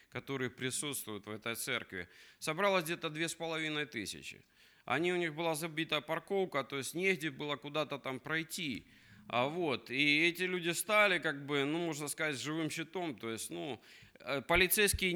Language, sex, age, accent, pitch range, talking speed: Russian, male, 20-39, native, 135-180 Hz, 145 wpm